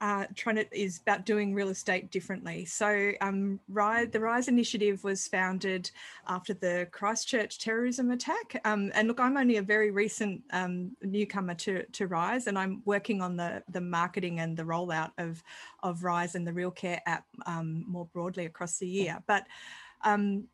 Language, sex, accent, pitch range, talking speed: English, female, Australian, 175-210 Hz, 180 wpm